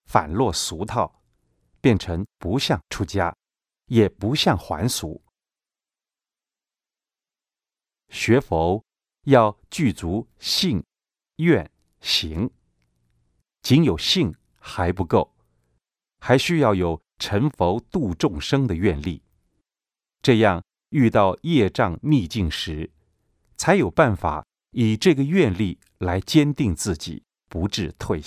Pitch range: 85-120 Hz